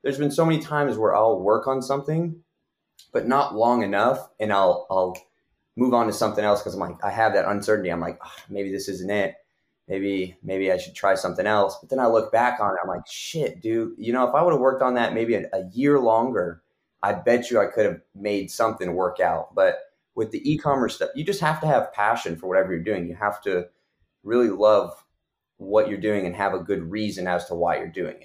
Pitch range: 95-130 Hz